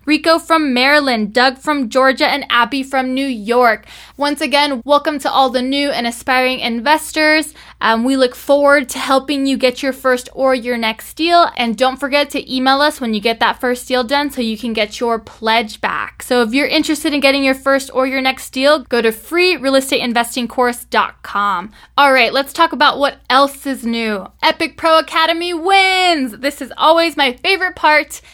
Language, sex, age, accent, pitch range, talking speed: English, female, 10-29, American, 250-305 Hz, 190 wpm